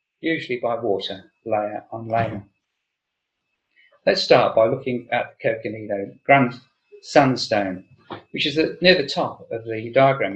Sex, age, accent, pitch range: male, 40-59, British, 115-150 Hz